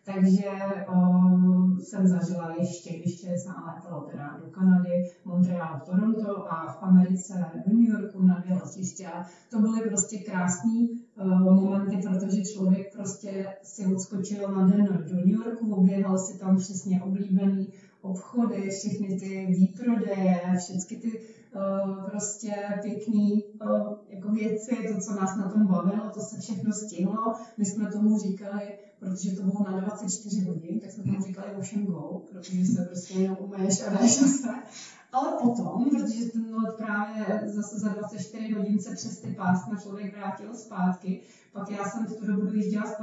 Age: 30-49